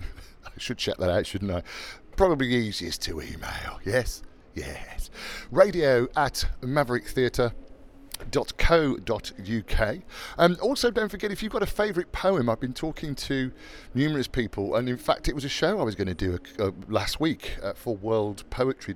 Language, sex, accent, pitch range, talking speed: English, male, British, 105-150 Hz, 155 wpm